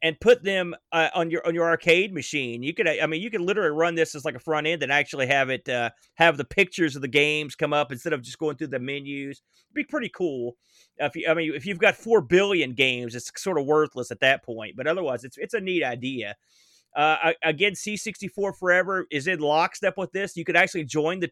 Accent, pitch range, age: American, 140-180 Hz, 30-49